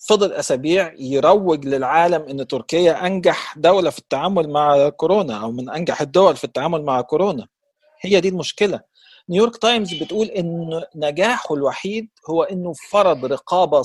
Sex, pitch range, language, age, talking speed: male, 150-220 Hz, Arabic, 50-69, 145 wpm